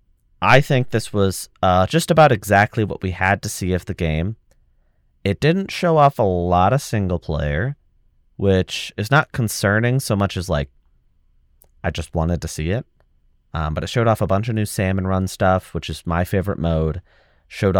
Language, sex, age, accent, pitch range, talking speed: English, male, 30-49, American, 85-110 Hz, 190 wpm